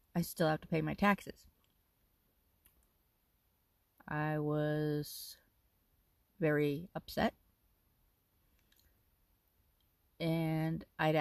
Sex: female